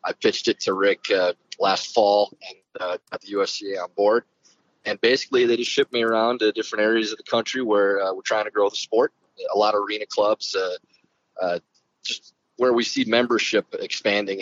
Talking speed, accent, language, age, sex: 205 wpm, American, English, 30-49, male